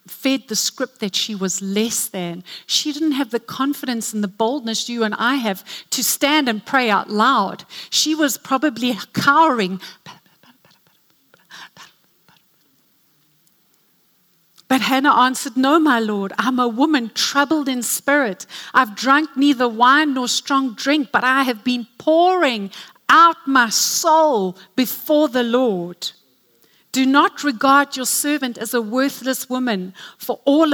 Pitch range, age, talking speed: 225-310 Hz, 50-69, 140 wpm